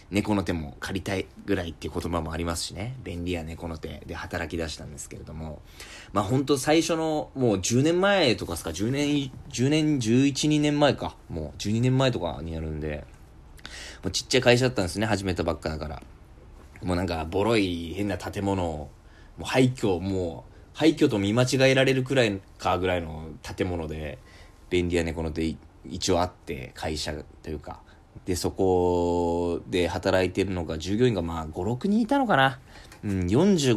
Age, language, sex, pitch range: 20-39, Japanese, male, 80-110 Hz